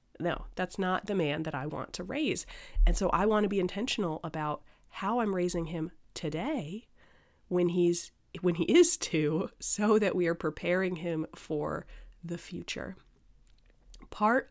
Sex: female